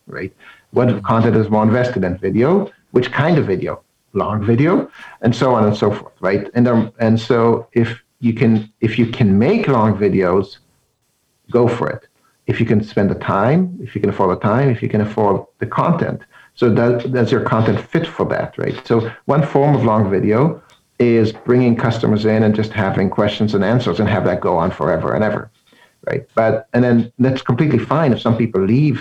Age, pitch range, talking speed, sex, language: 60-79, 105-125 Hz, 205 wpm, male, English